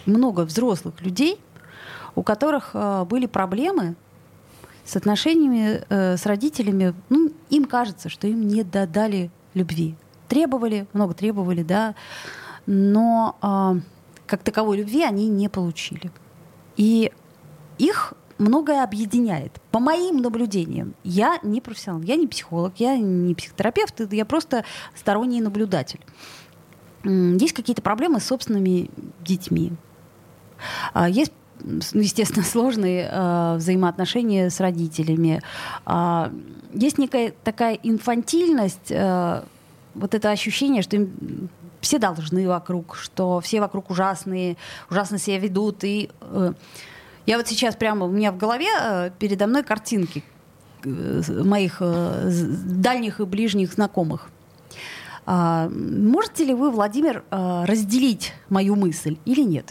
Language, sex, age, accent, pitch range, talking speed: Russian, female, 30-49, native, 180-230 Hz, 110 wpm